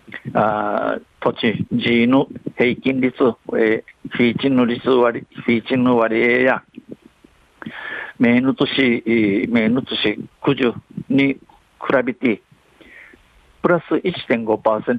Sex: male